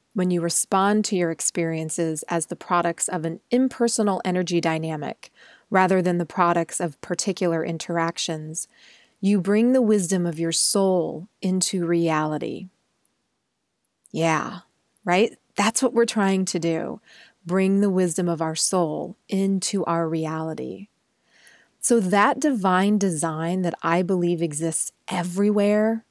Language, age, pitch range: English, 30-49, 170-220 Hz